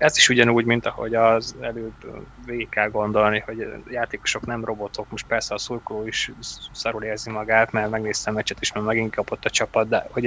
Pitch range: 105-120 Hz